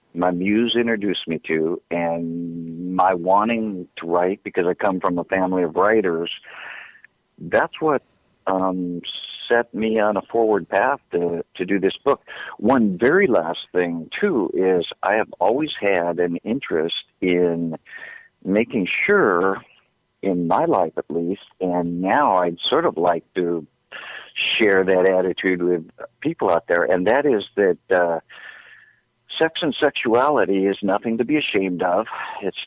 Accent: American